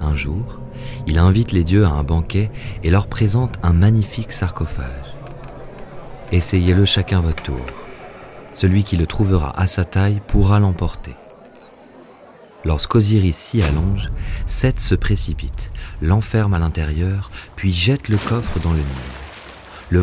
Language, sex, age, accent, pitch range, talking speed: French, male, 40-59, French, 80-110 Hz, 135 wpm